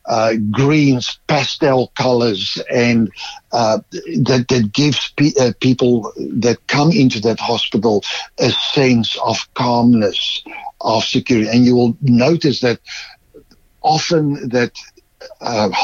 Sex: male